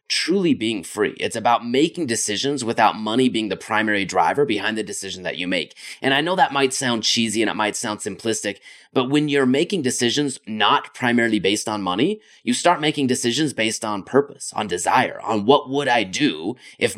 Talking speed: 200 wpm